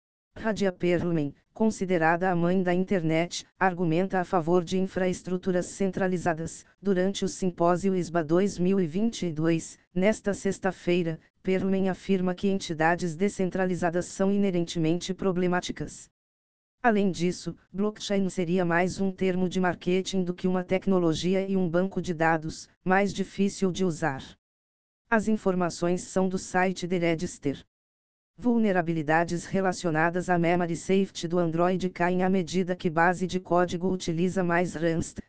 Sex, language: female, Portuguese